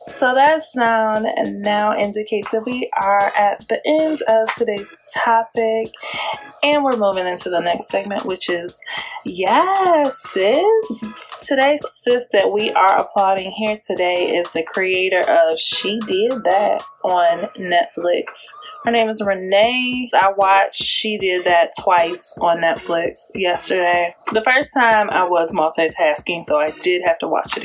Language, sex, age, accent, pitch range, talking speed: English, female, 20-39, American, 175-235 Hz, 150 wpm